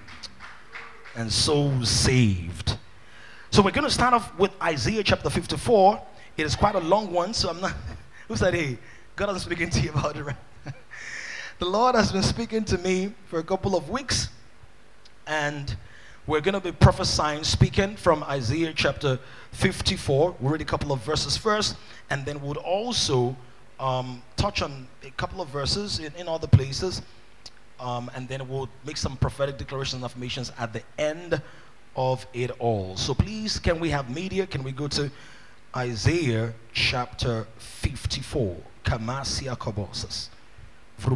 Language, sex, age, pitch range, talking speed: English, male, 20-39, 115-155 Hz, 155 wpm